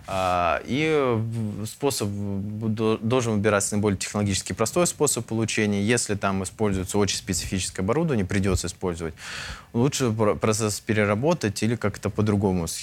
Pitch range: 95-110 Hz